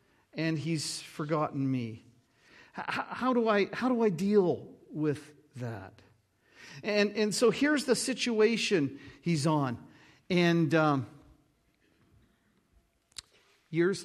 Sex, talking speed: male, 100 wpm